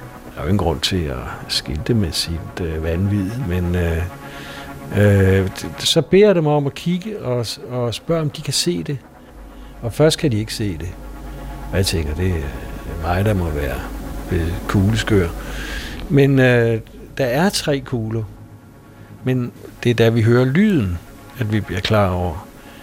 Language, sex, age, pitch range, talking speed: Danish, male, 60-79, 100-140 Hz, 170 wpm